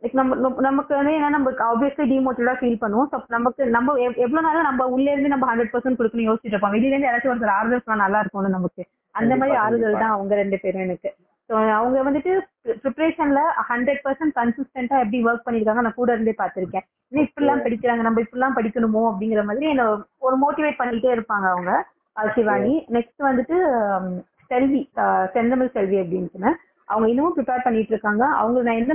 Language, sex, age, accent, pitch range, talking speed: Tamil, female, 20-39, native, 220-275 Hz, 165 wpm